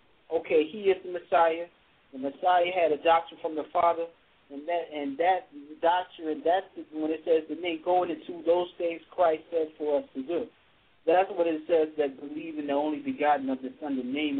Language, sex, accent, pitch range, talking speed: English, male, American, 155-190 Hz, 210 wpm